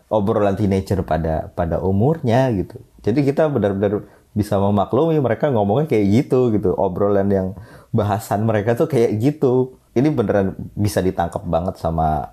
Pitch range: 90-115 Hz